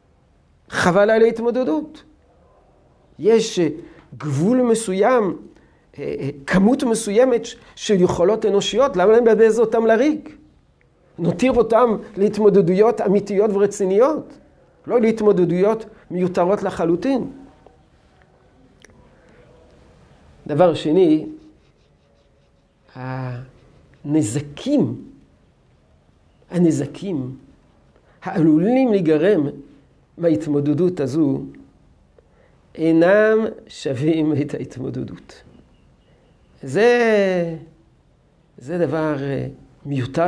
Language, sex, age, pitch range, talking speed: Hebrew, male, 50-69, 155-220 Hz, 60 wpm